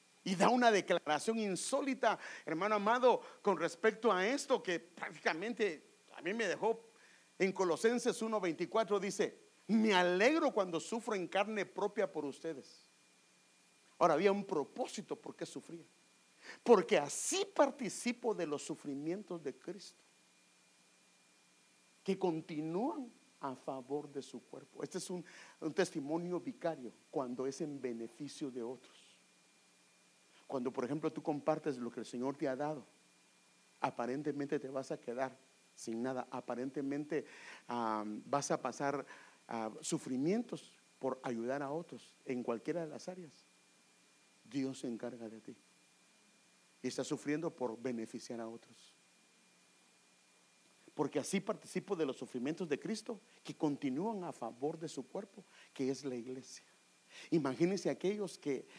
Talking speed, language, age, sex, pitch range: 135 wpm, English, 50-69, male, 125-195 Hz